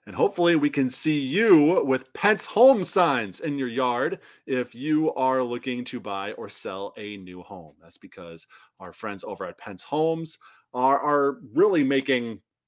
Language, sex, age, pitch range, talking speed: English, male, 30-49, 105-165 Hz, 170 wpm